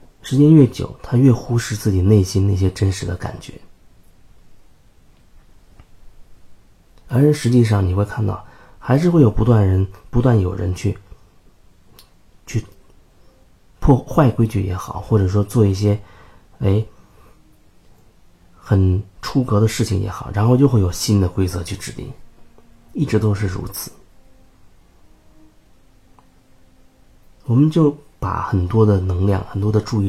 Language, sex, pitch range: Chinese, male, 95-115 Hz